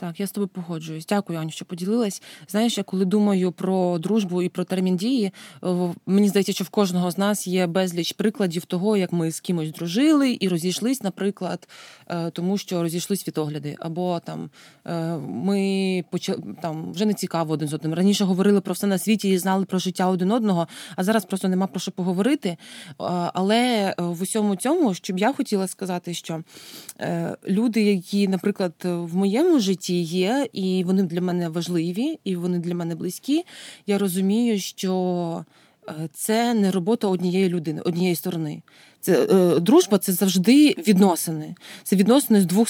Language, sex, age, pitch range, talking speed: Ukrainian, female, 20-39, 175-210 Hz, 165 wpm